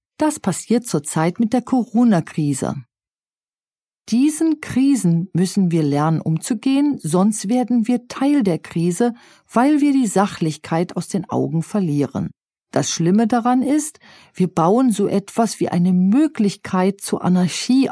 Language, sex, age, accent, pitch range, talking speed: German, female, 40-59, German, 170-250 Hz, 130 wpm